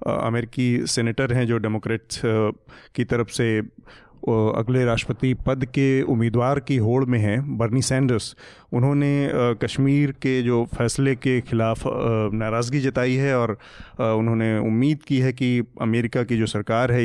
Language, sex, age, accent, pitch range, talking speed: Hindi, male, 30-49, native, 115-130 Hz, 140 wpm